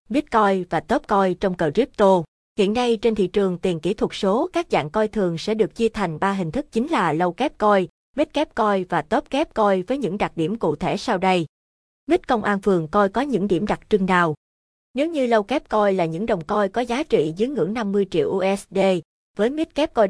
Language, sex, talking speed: Vietnamese, female, 235 wpm